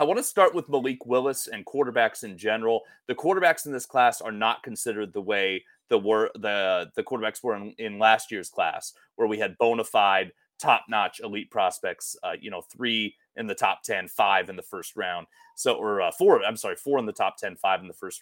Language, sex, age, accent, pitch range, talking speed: English, male, 30-49, American, 115-185 Hz, 225 wpm